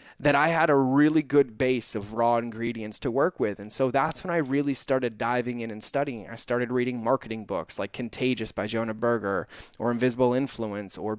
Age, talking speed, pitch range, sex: 30-49, 205 wpm, 115-140 Hz, male